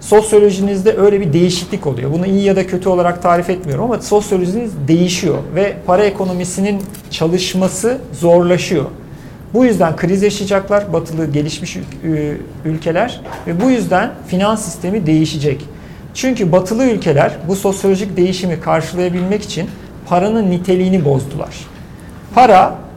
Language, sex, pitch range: Turkish, male, 160-195 Hz